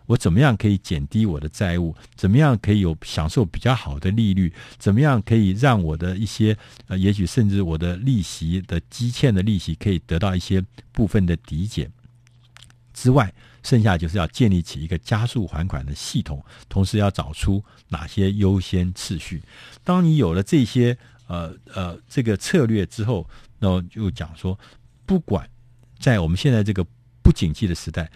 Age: 50-69